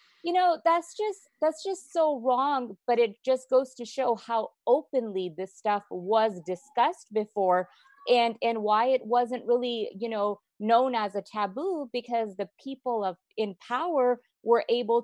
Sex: female